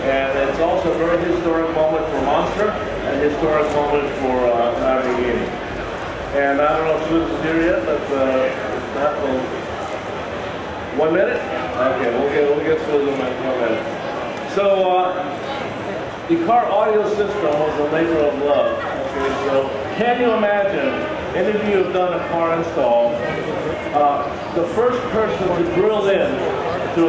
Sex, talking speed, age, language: male, 155 wpm, 50-69, English